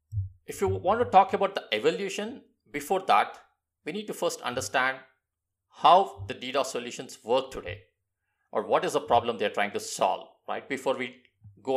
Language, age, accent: English, 50-69, Indian